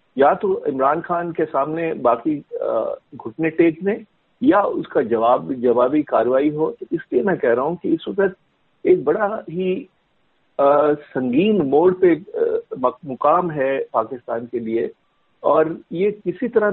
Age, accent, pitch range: 50-69, native, 140-215 Hz